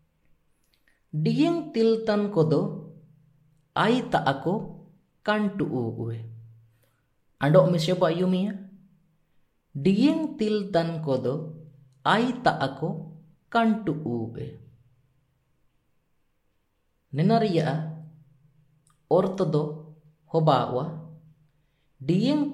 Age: 20-39